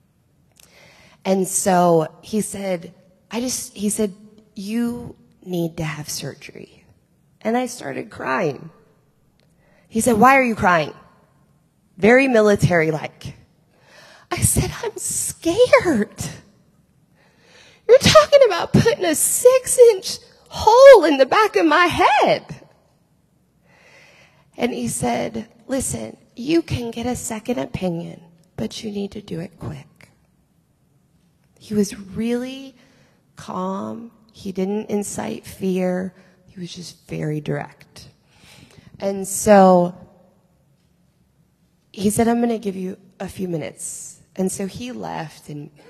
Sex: female